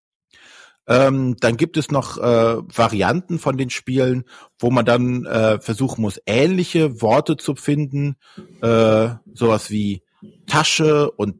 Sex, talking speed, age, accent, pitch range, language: male, 130 wpm, 40-59, German, 110-140 Hz, German